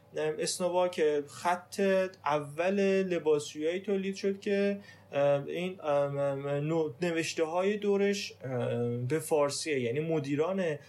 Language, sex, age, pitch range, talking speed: Persian, male, 30-49, 150-190 Hz, 90 wpm